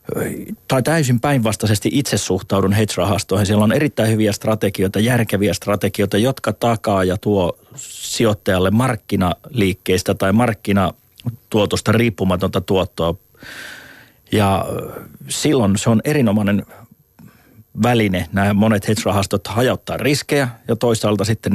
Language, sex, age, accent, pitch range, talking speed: Finnish, male, 30-49, native, 95-110 Hz, 105 wpm